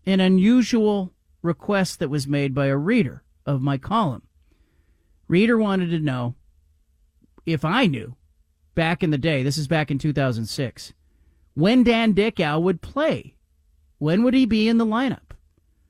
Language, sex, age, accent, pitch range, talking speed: English, male, 40-59, American, 115-165 Hz, 150 wpm